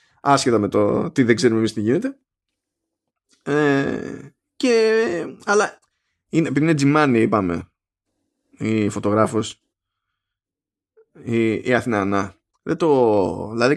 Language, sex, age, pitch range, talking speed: Greek, male, 20-39, 110-170 Hz, 100 wpm